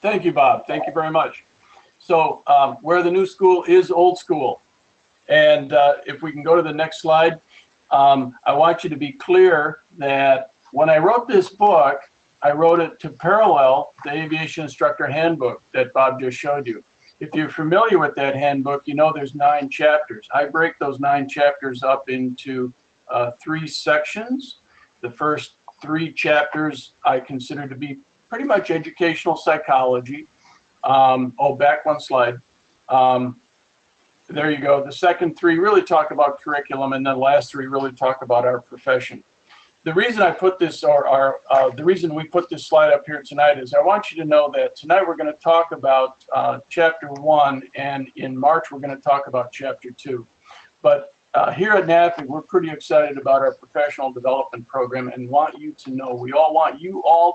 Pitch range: 135-170 Hz